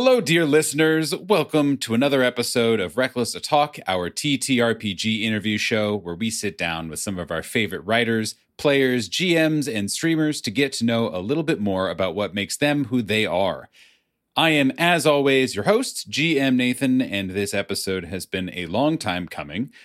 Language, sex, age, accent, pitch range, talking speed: English, male, 30-49, American, 100-140 Hz, 185 wpm